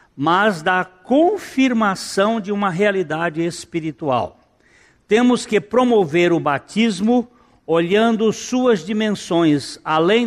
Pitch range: 145-210 Hz